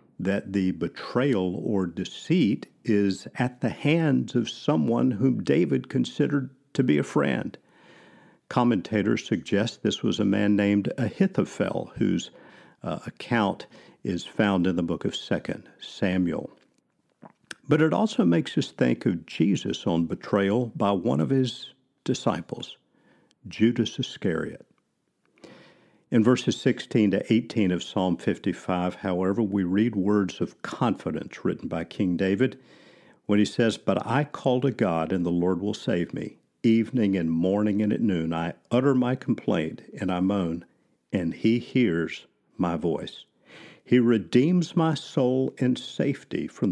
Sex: male